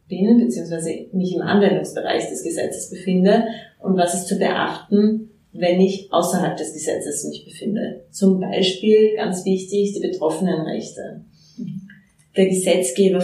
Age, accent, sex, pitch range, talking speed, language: 30-49, German, female, 170-195 Hz, 130 wpm, German